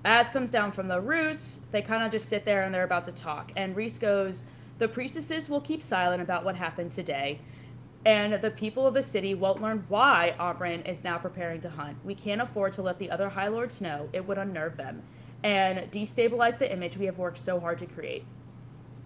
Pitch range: 170-220 Hz